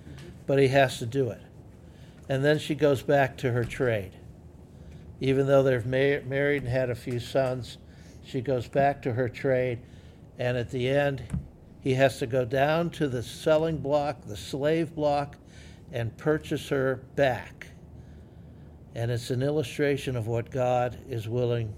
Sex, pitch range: male, 120-145 Hz